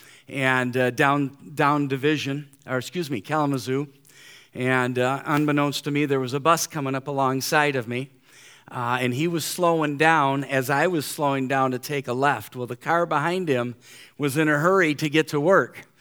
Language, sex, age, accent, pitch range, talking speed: English, male, 40-59, American, 135-165 Hz, 190 wpm